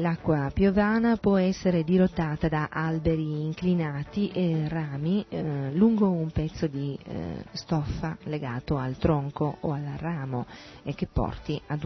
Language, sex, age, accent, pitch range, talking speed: Italian, female, 40-59, native, 145-175 Hz, 135 wpm